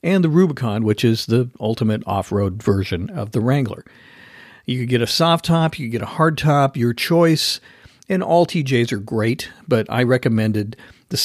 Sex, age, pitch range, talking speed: male, 50-69, 110-145 Hz, 185 wpm